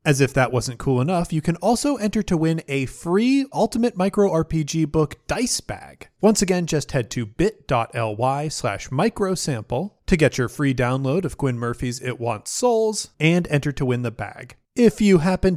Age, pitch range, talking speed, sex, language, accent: 30-49, 130-205 Hz, 185 wpm, male, English, American